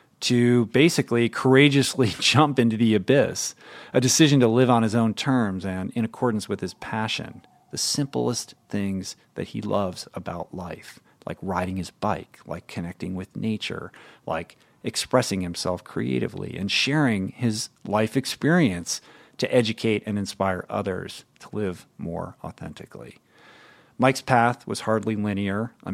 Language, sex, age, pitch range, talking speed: English, male, 50-69, 100-125 Hz, 140 wpm